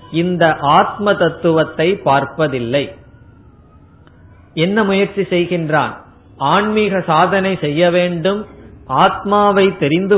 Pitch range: 150-195 Hz